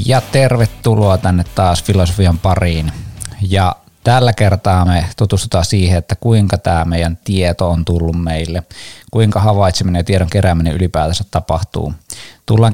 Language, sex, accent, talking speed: Finnish, male, native, 130 wpm